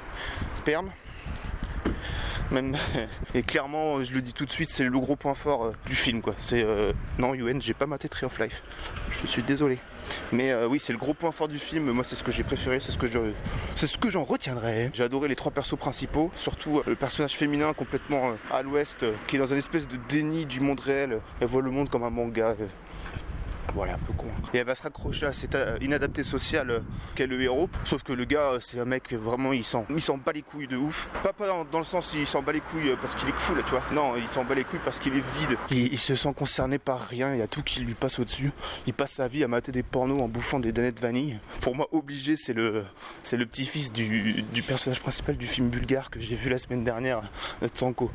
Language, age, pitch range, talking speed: French, 20-39, 120-145 Hz, 250 wpm